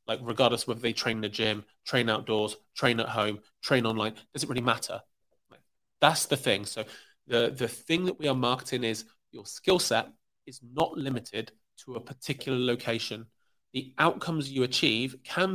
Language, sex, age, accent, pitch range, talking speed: English, male, 30-49, British, 115-145 Hz, 180 wpm